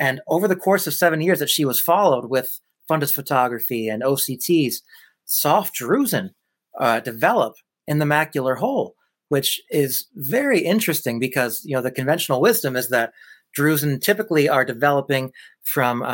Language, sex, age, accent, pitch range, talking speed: English, male, 30-49, American, 125-150 Hz, 155 wpm